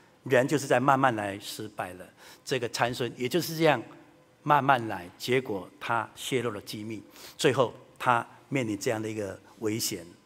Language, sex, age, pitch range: Chinese, male, 60-79, 130-210 Hz